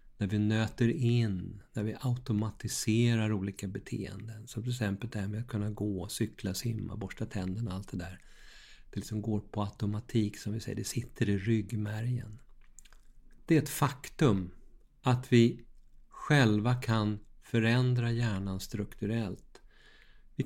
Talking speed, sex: 150 wpm, male